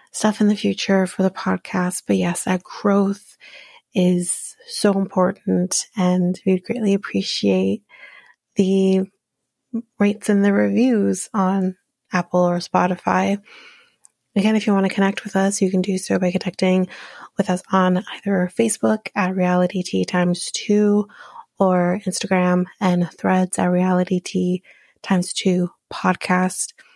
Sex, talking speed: female, 125 wpm